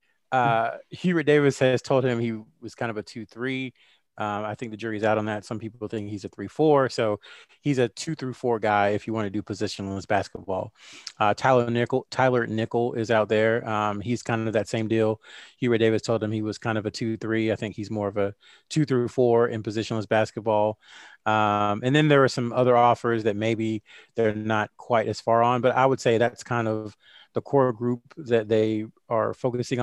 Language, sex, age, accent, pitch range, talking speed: English, male, 30-49, American, 110-125 Hz, 220 wpm